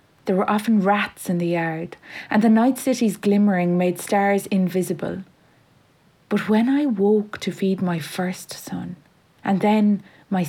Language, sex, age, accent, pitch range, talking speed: English, female, 30-49, Irish, 170-200 Hz, 155 wpm